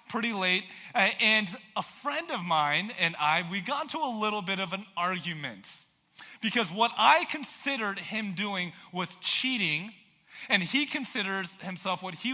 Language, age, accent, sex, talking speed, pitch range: English, 30-49, American, male, 160 wpm, 185-240 Hz